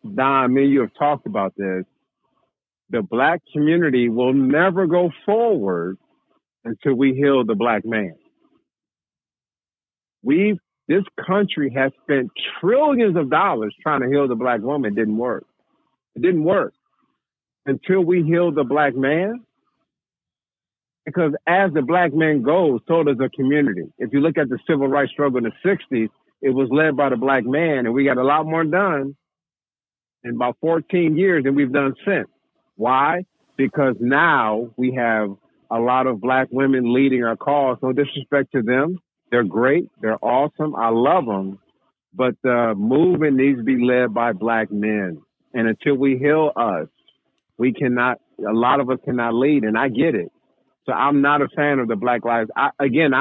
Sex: male